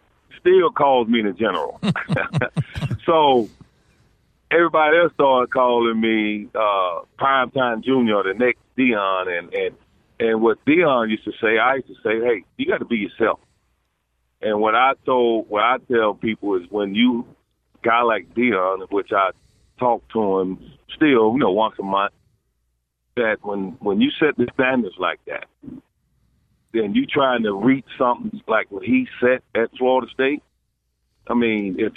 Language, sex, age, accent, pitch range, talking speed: English, male, 40-59, American, 105-140 Hz, 160 wpm